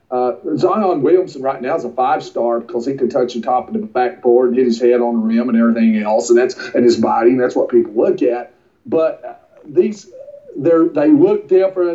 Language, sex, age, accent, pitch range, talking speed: English, male, 40-59, American, 125-175 Hz, 220 wpm